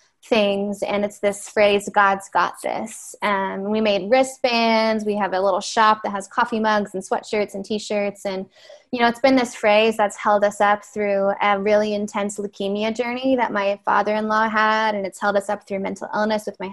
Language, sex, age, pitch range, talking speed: English, female, 20-39, 200-225 Hz, 215 wpm